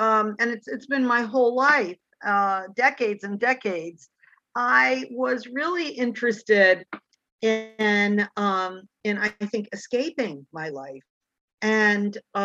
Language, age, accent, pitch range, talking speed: English, 50-69, American, 195-250 Hz, 120 wpm